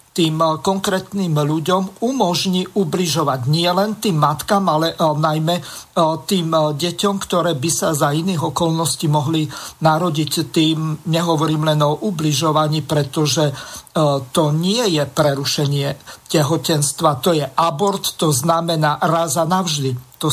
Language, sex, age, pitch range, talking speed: Slovak, male, 50-69, 150-175 Hz, 120 wpm